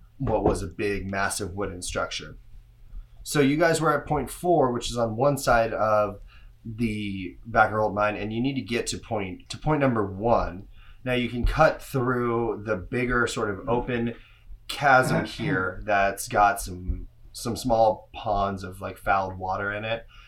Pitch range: 100-120 Hz